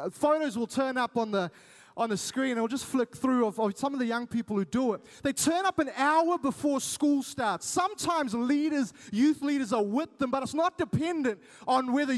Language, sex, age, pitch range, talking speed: English, male, 20-39, 250-315 Hz, 220 wpm